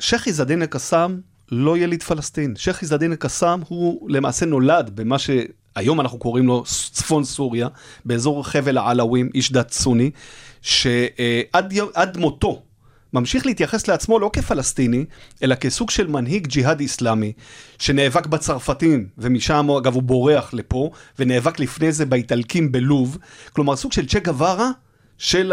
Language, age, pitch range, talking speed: Hebrew, 30-49, 125-160 Hz, 130 wpm